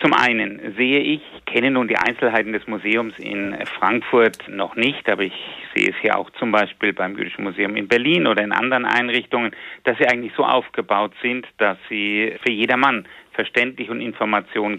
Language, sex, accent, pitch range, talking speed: German, male, German, 105-125 Hz, 180 wpm